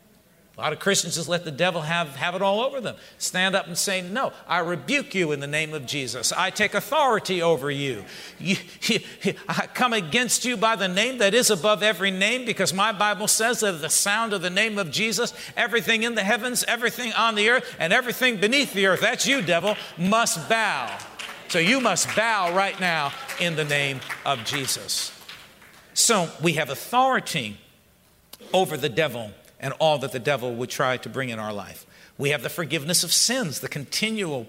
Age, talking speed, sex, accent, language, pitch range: 50-69, 200 wpm, male, American, English, 145-210 Hz